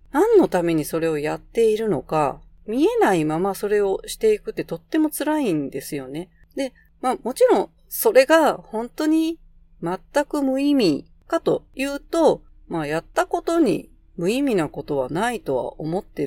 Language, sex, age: Japanese, female, 40-59